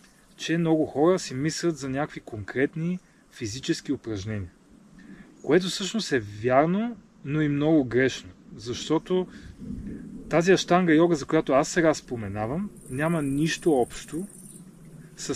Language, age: Bulgarian, 30-49